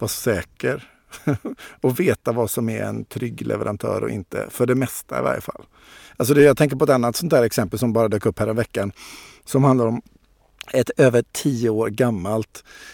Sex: male